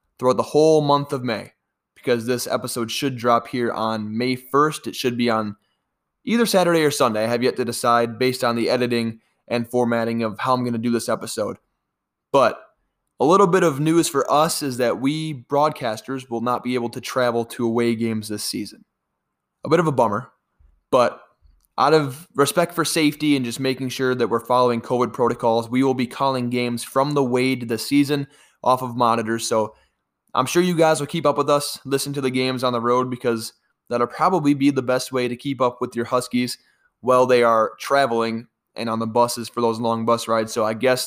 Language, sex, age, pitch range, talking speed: English, male, 20-39, 120-140 Hz, 210 wpm